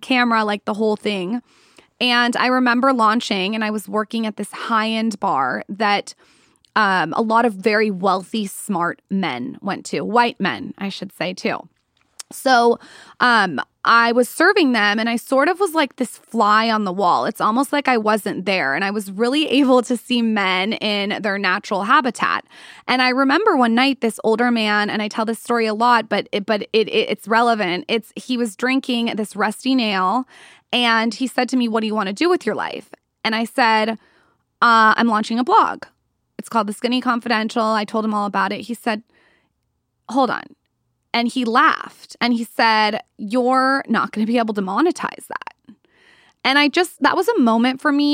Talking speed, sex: 200 wpm, female